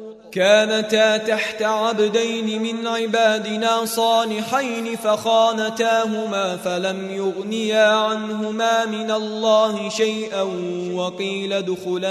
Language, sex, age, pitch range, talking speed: Arabic, male, 20-39, 200-220 Hz, 75 wpm